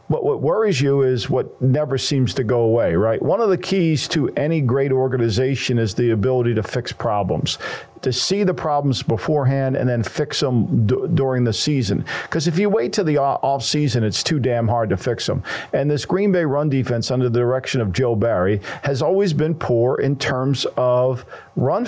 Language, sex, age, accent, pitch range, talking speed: English, male, 50-69, American, 125-150 Hz, 200 wpm